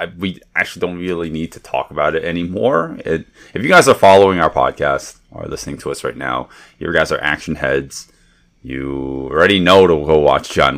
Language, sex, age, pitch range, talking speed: English, male, 30-49, 75-110 Hz, 205 wpm